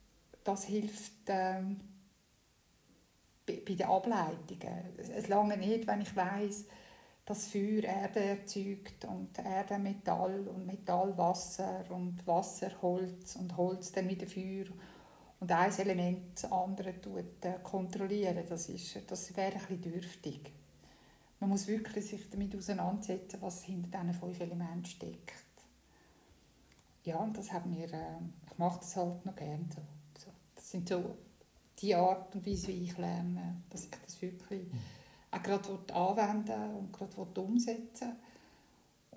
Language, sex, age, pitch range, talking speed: German, female, 60-79, 180-205 Hz, 130 wpm